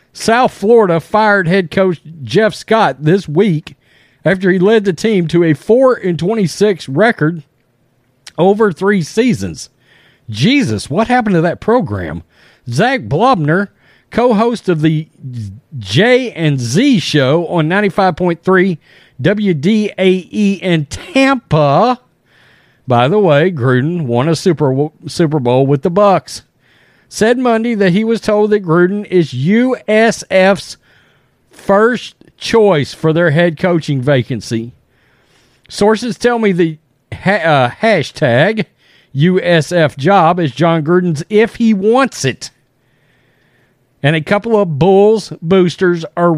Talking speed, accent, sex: 120 wpm, American, male